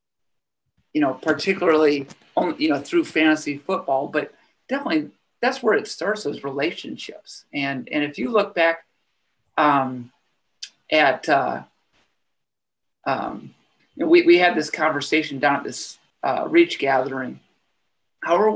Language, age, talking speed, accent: English, 50-69, 135 wpm, American